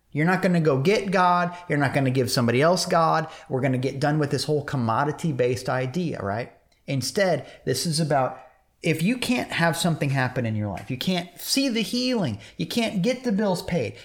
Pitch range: 125-180 Hz